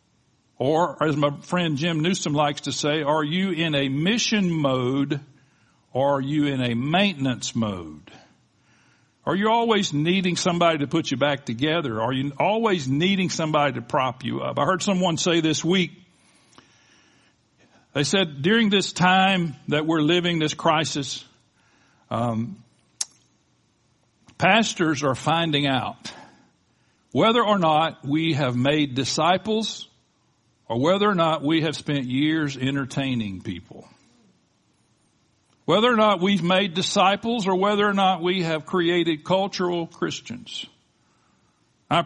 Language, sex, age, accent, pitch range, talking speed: English, male, 60-79, American, 125-180 Hz, 135 wpm